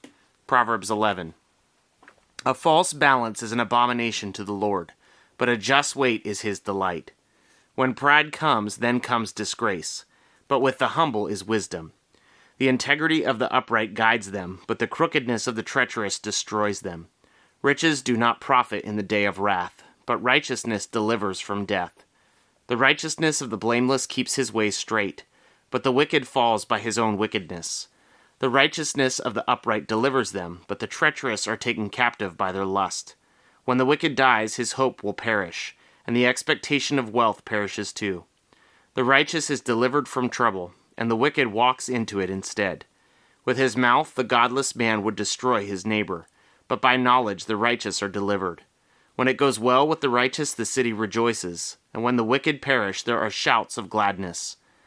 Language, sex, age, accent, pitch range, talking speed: English, male, 30-49, American, 105-130 Hz, 170 wpm